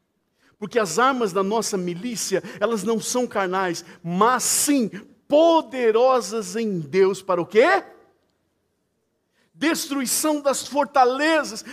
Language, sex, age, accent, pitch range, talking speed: Portuguese, male, 50-69, Brazilian, 205-300 Hz, 105 wpm